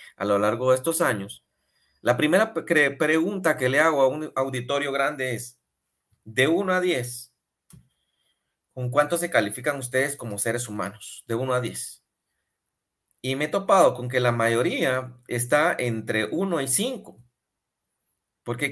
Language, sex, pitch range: Spanish, male, 120-155 Hz